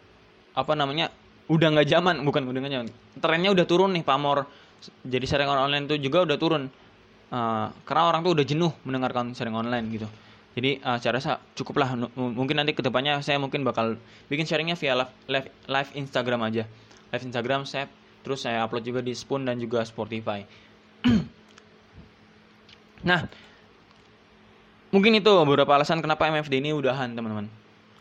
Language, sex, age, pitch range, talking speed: Indonesian, male, 20-39, 120-155 Hz, 160 wpm